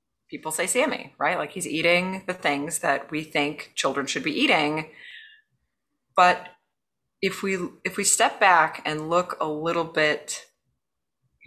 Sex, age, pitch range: female, 20-39, 160-220 Hz